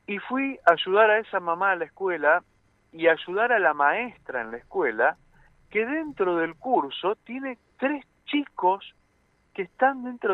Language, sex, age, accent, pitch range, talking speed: Spanish, male, 50-69, Argentinian, 155-250 Hz, 170 wpm